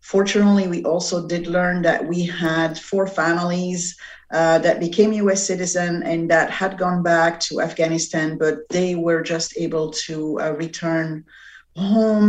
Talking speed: 150 wpm